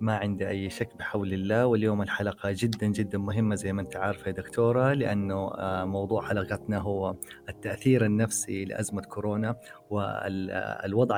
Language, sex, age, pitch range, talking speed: Arabic, male, 30-49, 100-120 Hz, 140 wpm